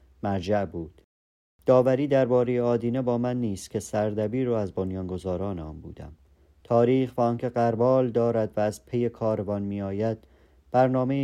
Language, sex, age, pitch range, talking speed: Persian, male, 40-59, 90-110 Hz, 140 wpm